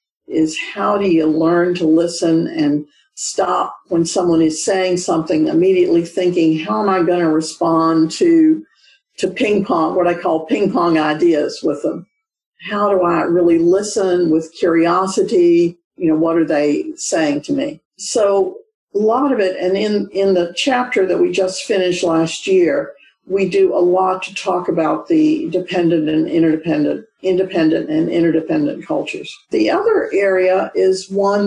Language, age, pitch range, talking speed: English, 50-69, 170-230 Hz, 160 wpm